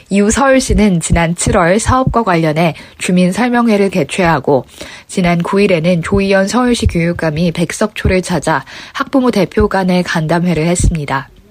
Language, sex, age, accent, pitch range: Korean, female, 20-39, native, 170-215 Hz